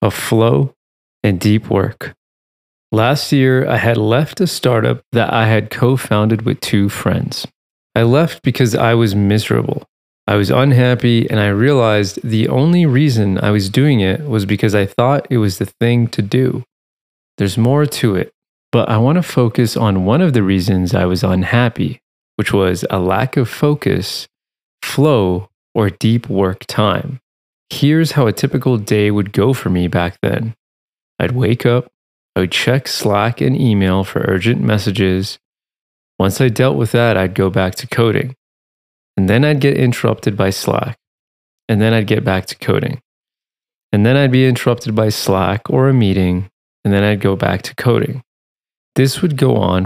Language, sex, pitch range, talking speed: English, male, 100-130 Hz, 170 wpm